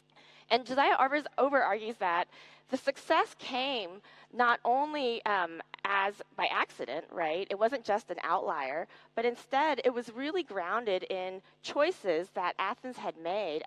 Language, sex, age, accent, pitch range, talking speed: Greek, female, 30-49, American, 175-250 Hz, 140 wpm